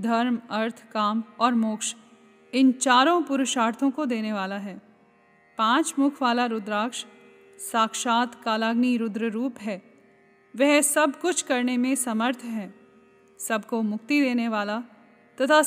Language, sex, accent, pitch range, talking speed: Hindi, female, native, 215-255 Hz, 125 wpm